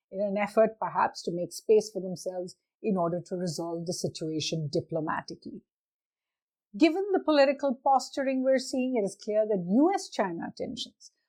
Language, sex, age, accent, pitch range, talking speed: English, female, 50-69, Indian, 190-235 Hz, 150 wpm